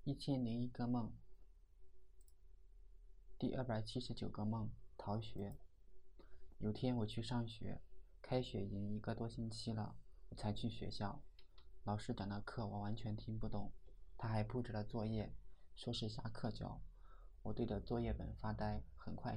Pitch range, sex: 100-115 Hz, male